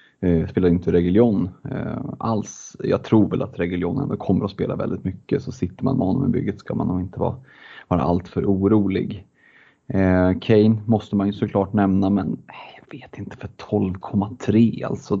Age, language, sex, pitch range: 30-49, Swedish, male, 95-125 Hz